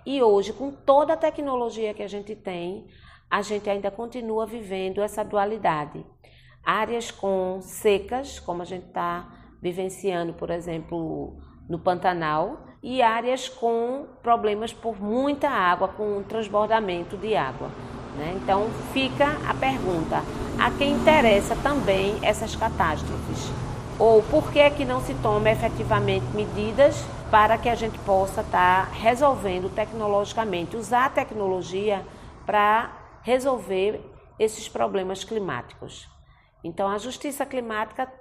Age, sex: 40-59, female